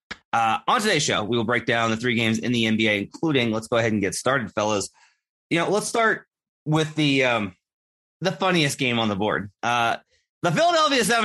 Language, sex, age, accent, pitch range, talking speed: English, male, 30-49, American, 105-155 Hz, 205 wpm